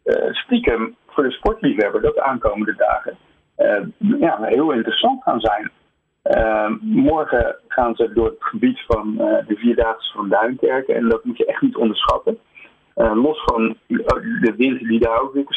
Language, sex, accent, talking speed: Dutch, male, Dutch, 175 wpm